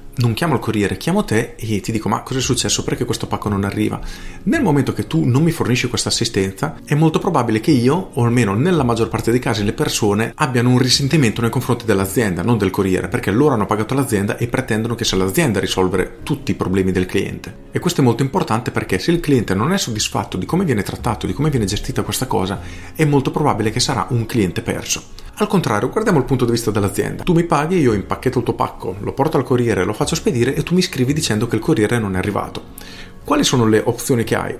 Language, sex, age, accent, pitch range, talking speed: Italian, male, 40-59, native, 105-135 Hz, 240 wpm